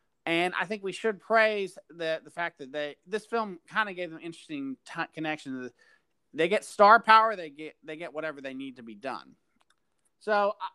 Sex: male